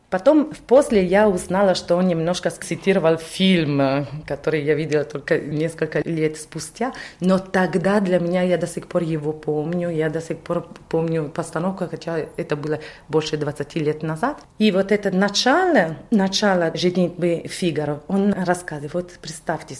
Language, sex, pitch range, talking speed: Russian, female, 160-205 Hz, 155 wpm